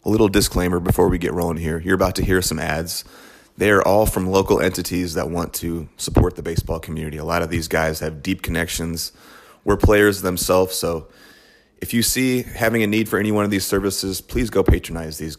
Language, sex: English, male